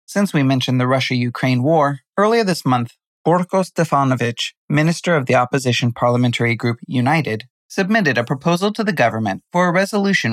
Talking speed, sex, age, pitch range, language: 155 wpm, male, 30-49, 120-160 Hz, English